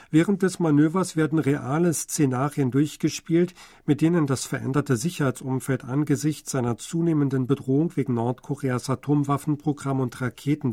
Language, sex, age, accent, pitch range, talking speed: German, male, 50-69, German, 130-155 Hz, 115 wpm